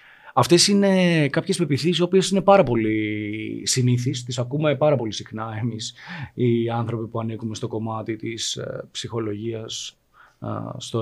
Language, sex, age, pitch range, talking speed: Greek, male, 20-39, 120-150 Hz, 135 wpm